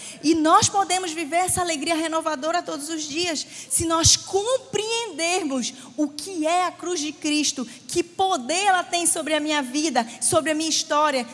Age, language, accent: 20-39, Portuguese, Brazilian